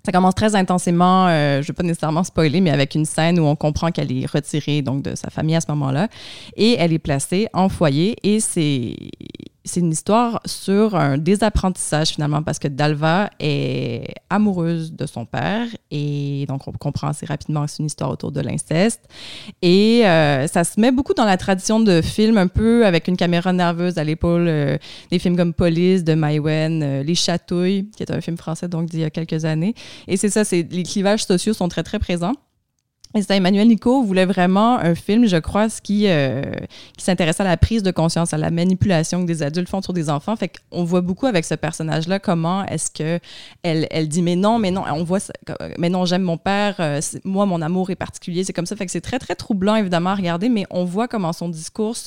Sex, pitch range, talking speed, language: female, 160-195 Hz, 220 wpm, French